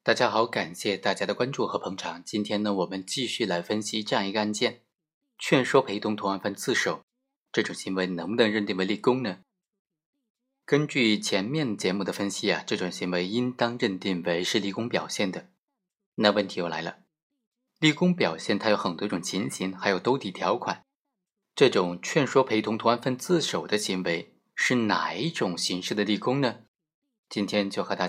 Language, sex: Chinese, male